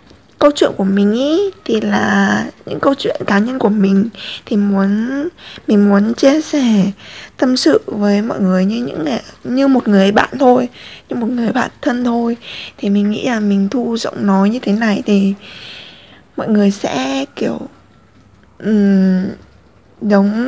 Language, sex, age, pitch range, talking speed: Vietnamese, female, 20-39, 205-265 Hz, 165 wpm